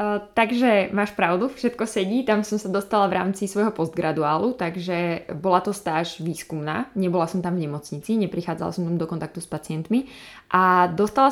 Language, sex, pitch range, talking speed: Czech, female, 170-195 Hz, 170 wpm